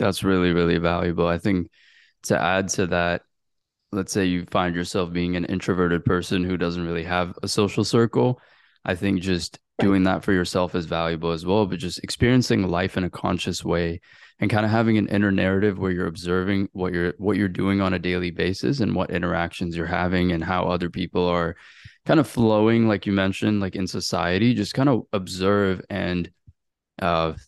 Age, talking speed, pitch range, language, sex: 20-39, 195 wpm, 85-100 Hz, English, male